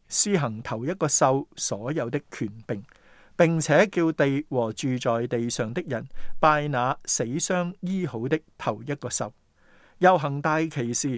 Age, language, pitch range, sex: 50-69, Chinese, 120-160 Hz, male